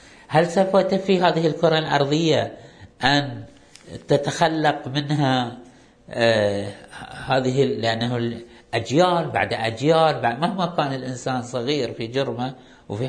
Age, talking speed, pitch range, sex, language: 50-69, 110 wpm, 115-150 Hz, male, Arabic